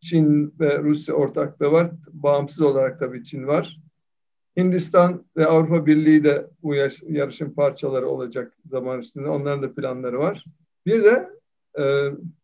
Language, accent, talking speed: Turkish, native, 140 wpm